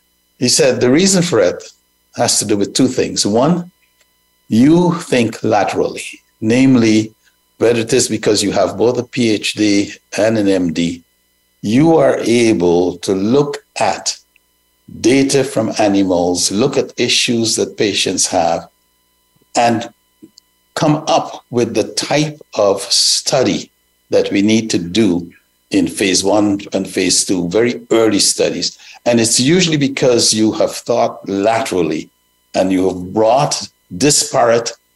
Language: English